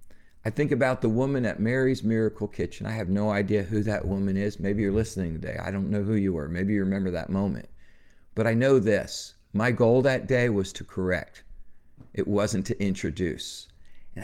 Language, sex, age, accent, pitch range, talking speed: English, male, 50-69, American, 95-120 Hz, 200 wpm